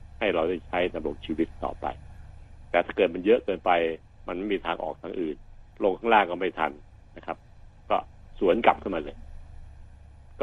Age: 70-89